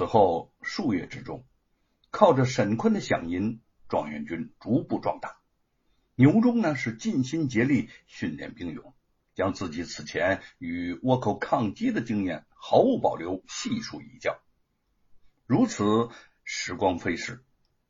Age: 60-79